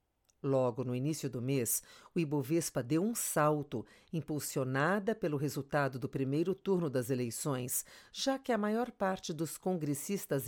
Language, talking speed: Portuguese, 145 wpm